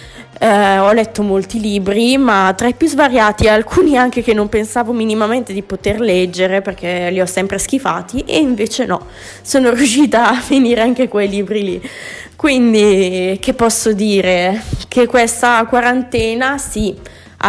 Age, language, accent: 20-39, Italian, native